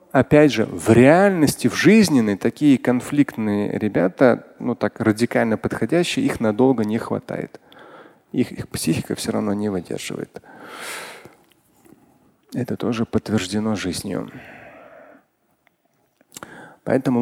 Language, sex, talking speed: Russian, male, 100 wpm